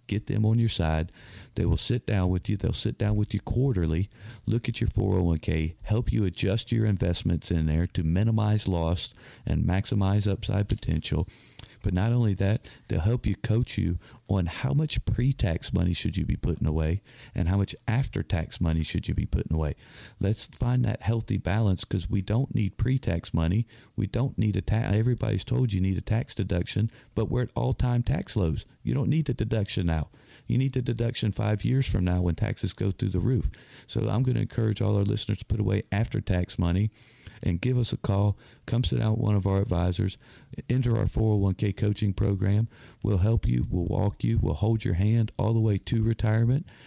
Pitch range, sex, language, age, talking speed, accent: 95-120 Hz, male, English, 50-69, 205 wpm, American